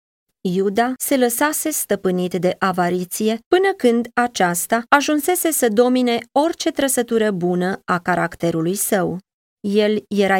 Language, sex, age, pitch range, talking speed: Romanian, female, 20-39, 175-230 Hz, 115 wpm